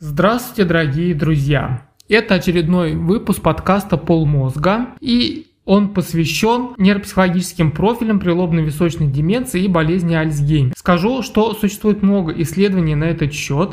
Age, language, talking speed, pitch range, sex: 20-39, Russian, 120 wpm, 160-195 Hz, male